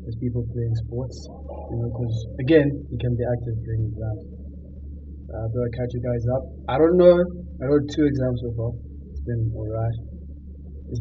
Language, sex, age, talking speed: English, male, 20-39, 185 wpm